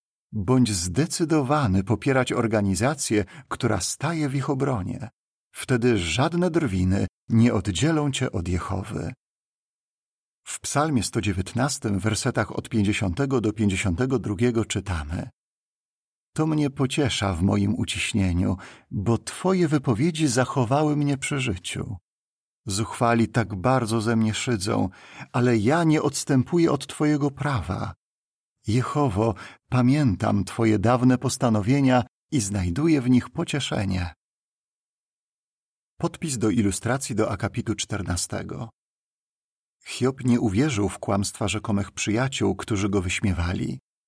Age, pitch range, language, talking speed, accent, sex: 50-69, 100-135 Hz, Polish, 105 wpm, native, male